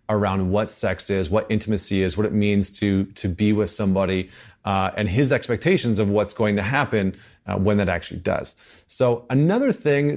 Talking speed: 190 wpm